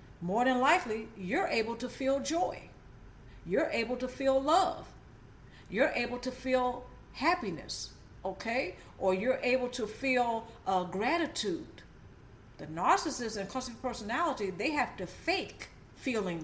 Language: English